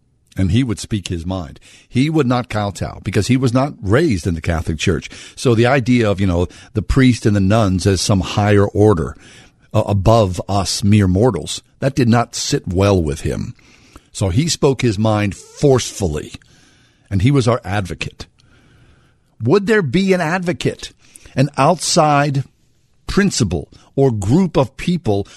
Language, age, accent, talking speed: English, 50-69, American, 165 wpm